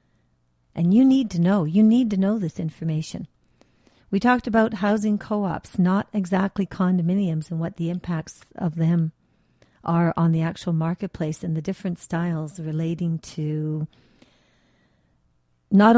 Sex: female